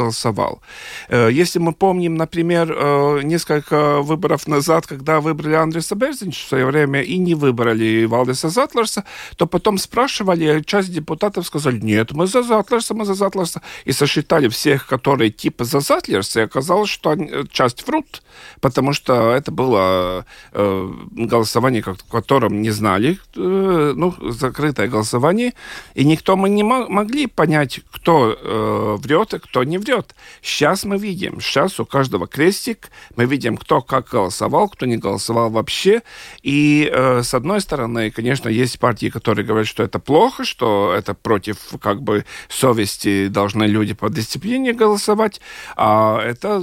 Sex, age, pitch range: male, 40-59, 120-180 Hz